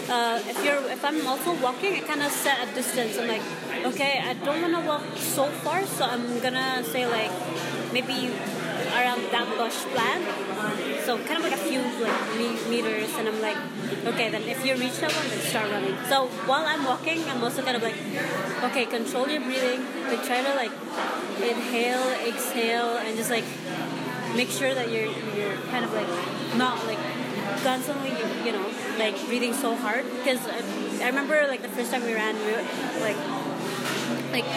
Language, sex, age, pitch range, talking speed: English, female, 20-39, 235-275 Hz, 185 wpm